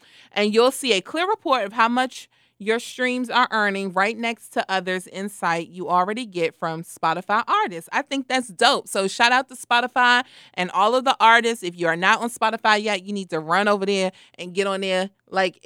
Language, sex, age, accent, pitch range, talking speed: English, female, 30-49, American, 185-245 Hz, 215 wpm